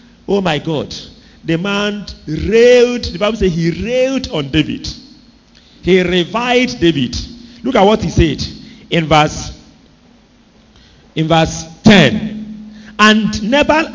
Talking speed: 115 wpm